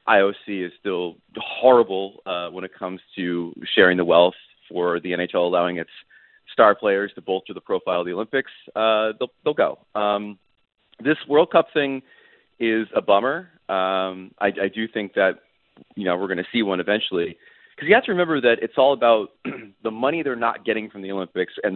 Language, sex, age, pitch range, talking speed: English, male, 30-49, 90-115 Hz, 195 wpm